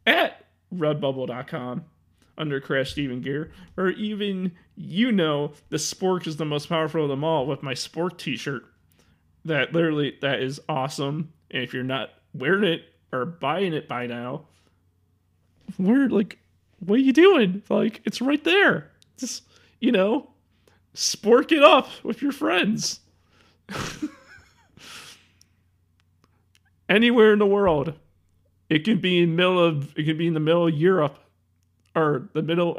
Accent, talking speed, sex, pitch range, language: American, 145 wpm, male, 120-185 Hz, English